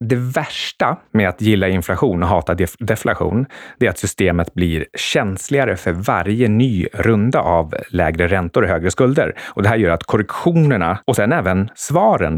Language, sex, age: Swedish, male, 30-49